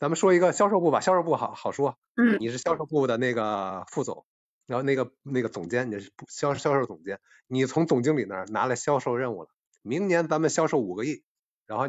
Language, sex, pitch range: Chinese, male, 130-185 Hz